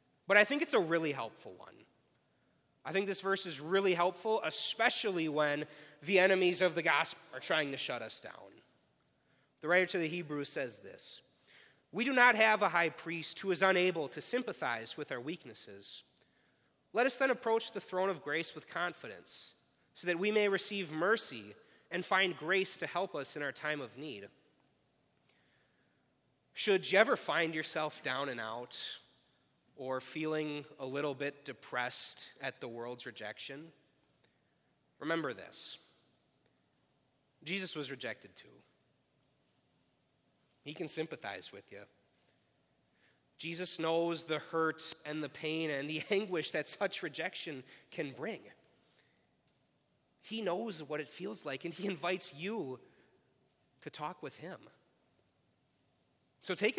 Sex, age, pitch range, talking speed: male, 30-49, 145-190 Hz, 145 wpm